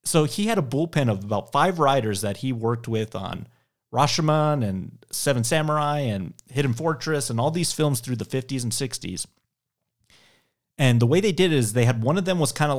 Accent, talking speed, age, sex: American, 210 wpm, 30-49, male